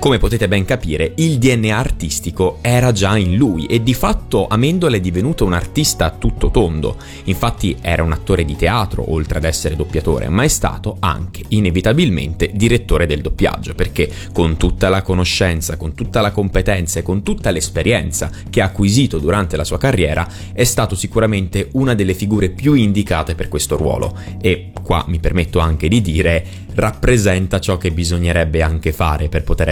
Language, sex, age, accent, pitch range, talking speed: Italian, male, 20-39, native, 80-105 Hz, 175 wpm